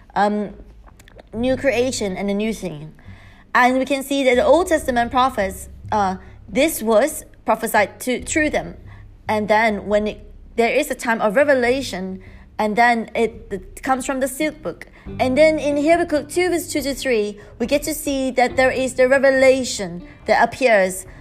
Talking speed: 175 wpm